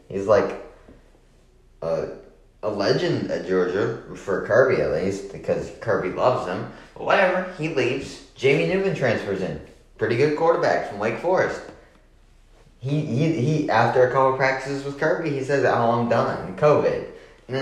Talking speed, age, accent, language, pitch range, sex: 155 wpm, 30-49, American, English, 105-140 Hz, male